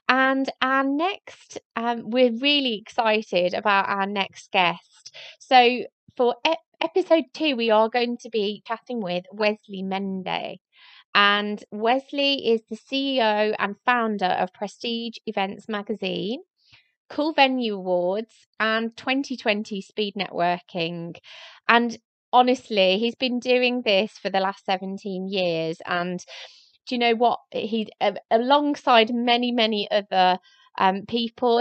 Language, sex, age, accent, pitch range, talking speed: English, female, 20-39, British, 185-240 Hz, 125 wpm